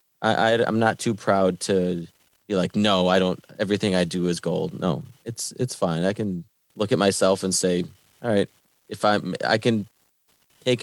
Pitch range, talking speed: 90-105 Hz, 195 wpm